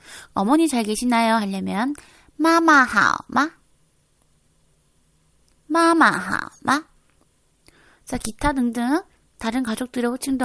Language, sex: Korean, female